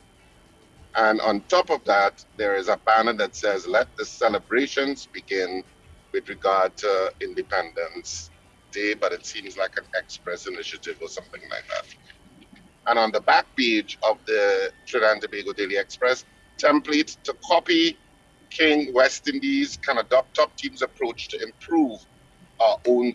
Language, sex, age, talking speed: English, male, 50-69, 155 wpm